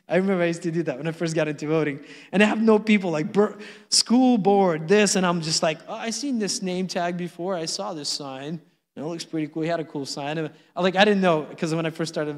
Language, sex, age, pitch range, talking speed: English, male, 20-39, 155-200 Hz, 270 wpm